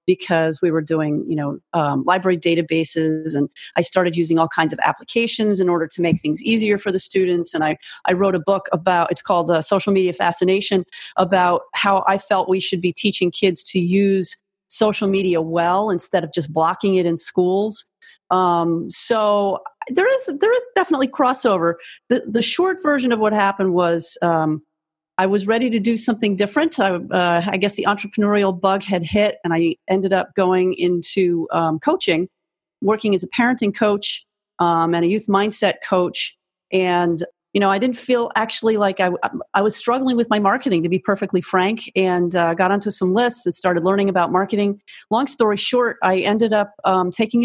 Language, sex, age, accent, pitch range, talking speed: English, female, 40-59, American, 175-210 Hz, 190 wpm